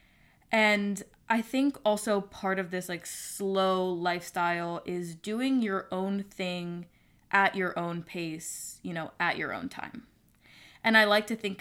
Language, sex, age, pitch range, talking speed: English, female, 10-29, 175-210 Hz, 155 wpm